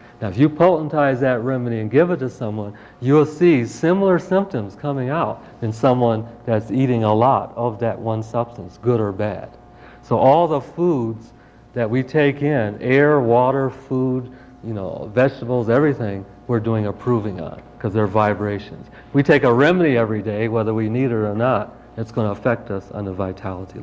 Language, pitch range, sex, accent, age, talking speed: English, 105-130 Hz, male, American, 50-69, 185 wpm